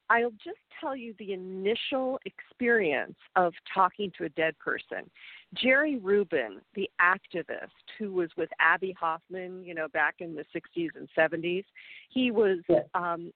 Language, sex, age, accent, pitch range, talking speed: English, female, 50-69, American, 175-230 Hz, 150 wpm